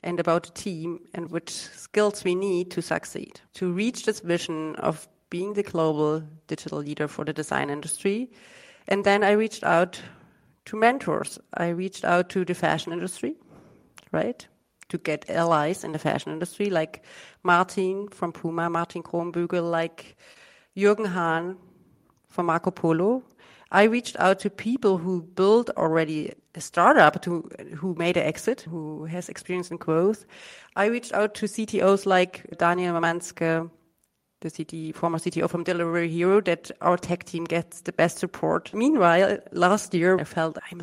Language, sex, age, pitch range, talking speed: English, female, 40-59, 165-195 Hz, 155 wpm